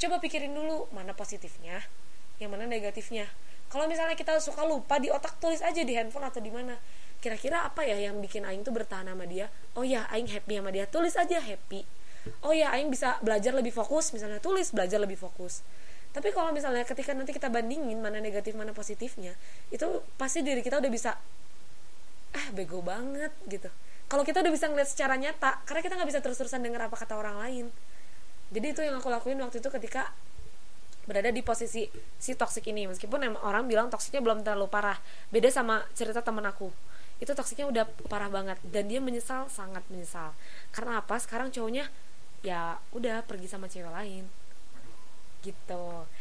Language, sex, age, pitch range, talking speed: Indonesian, female, 20-39, 205-265 Hz, 180 wpm